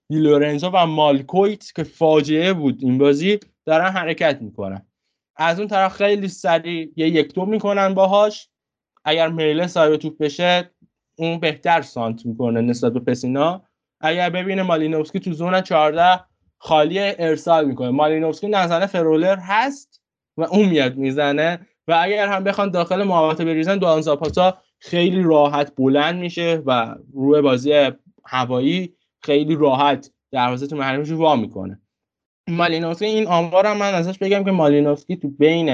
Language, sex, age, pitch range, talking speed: Persian, male, 20-39, 135-175 Hz, 135 wpm